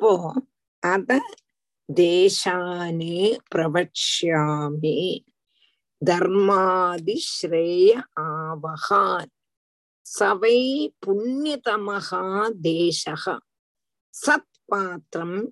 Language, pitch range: Tamil, 180-290 Hz